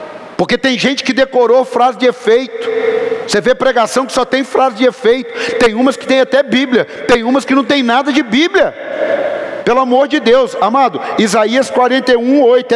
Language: Portuguese